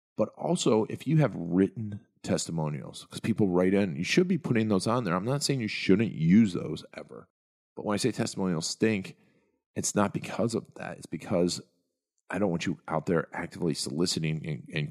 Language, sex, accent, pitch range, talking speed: English, male, American, 80-110 Hz, 195 wpm